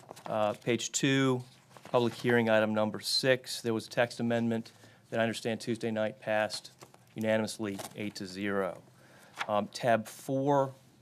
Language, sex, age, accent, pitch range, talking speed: English, male, 40-59, American, 110-125 Hz, 135 wpm